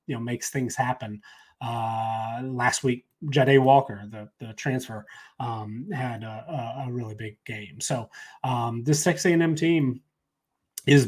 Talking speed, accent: 140 wpm, American